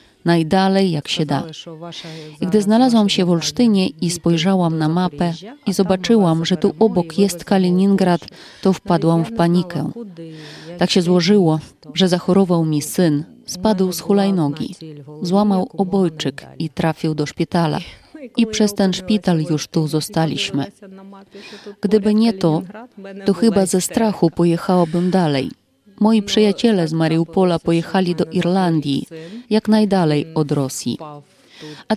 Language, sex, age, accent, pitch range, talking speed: Polish, female, 30-49, native, 165-200 Hz, 130 wpm